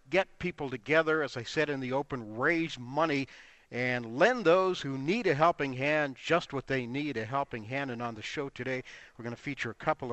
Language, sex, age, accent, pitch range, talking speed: English, male, 50-69, American, 130-165 Hz, 220 wpm